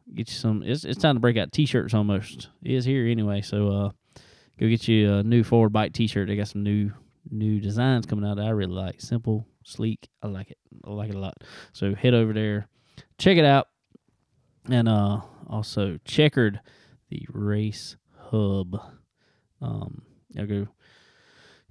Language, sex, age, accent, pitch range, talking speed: English, male, 20-39, American, 105-135 Hz, 180 wpm